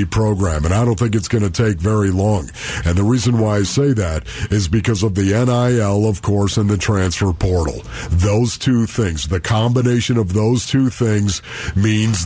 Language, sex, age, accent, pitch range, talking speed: English, male, 50-69, American, 105-140 Hz, 190 wpm